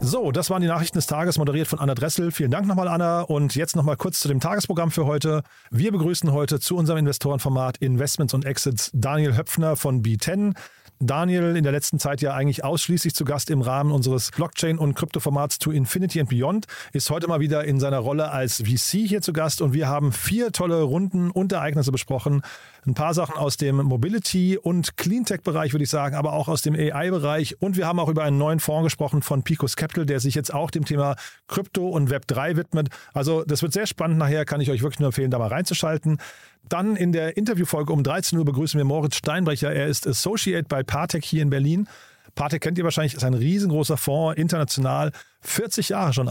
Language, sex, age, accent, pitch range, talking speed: German, male, 40-59, German, 140-170 Hz, 210 wpm